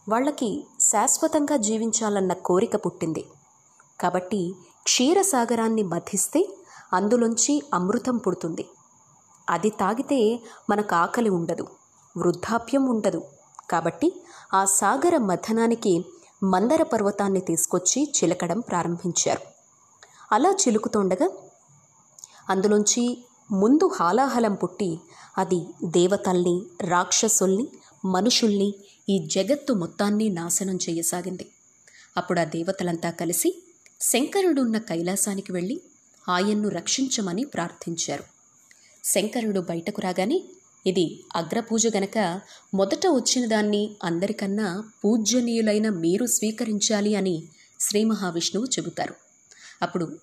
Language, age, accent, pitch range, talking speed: Telugu, 20-39, native, 180-230 Hz, 85 wpm